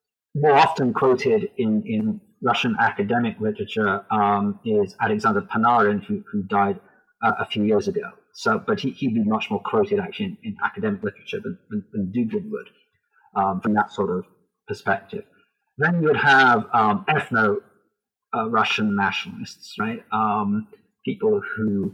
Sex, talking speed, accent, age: male, 150 wpm, British, 40-59